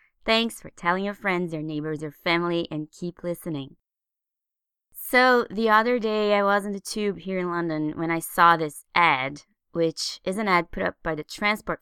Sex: female